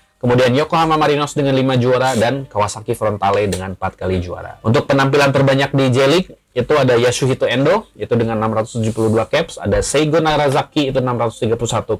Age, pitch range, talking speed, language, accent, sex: 20-39, 115-145 Hz, 155 wpm, Indonesian, native, male